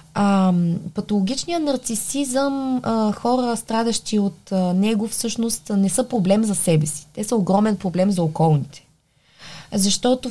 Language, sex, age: Bulgarian, female, 20-39